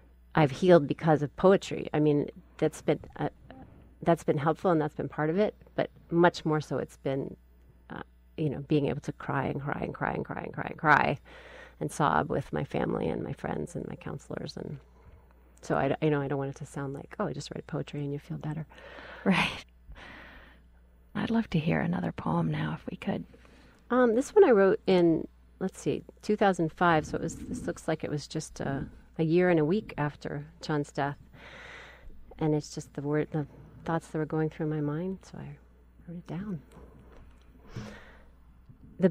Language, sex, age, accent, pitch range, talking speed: English, female, 30-49, American, 135-175 Hz, 205 wpm